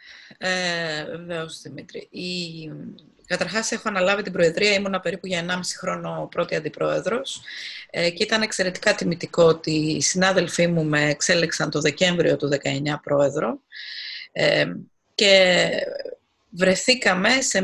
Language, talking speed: Greek, 120 wpm